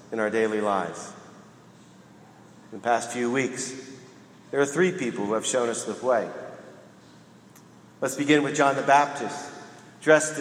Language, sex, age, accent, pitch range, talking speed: English, male, 40-59, American, 125-155 Hz, 145 wpm